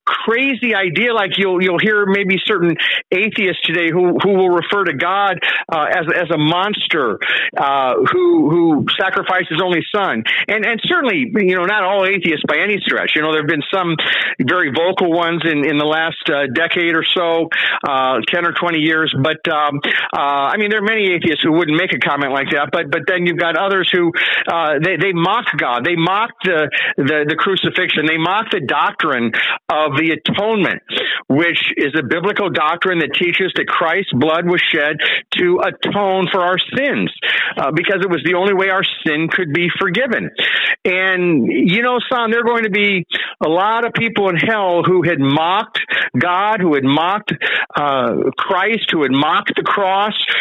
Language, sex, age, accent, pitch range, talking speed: English, male, 50-69, American, 160-200 Hz, 190 wpm